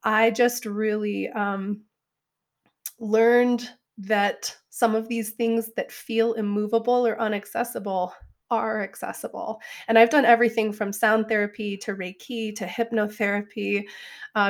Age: 20-39